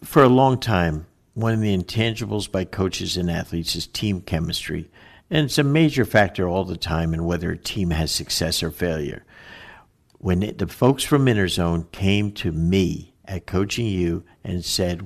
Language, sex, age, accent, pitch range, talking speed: English, male, 60-79, American, 90-120 Hz, 180 wpm